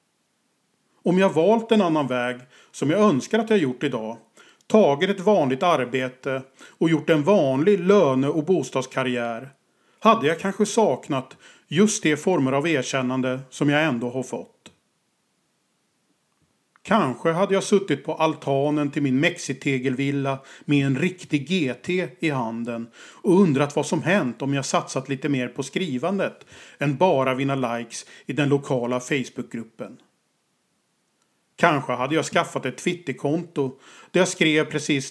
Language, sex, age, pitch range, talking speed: Swedish, male, 40-59, 130-180 Hz, 140 wpm